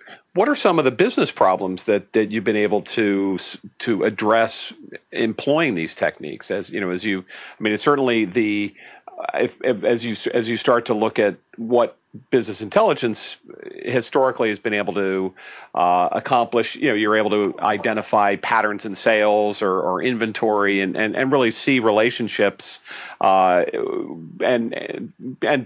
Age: 40-59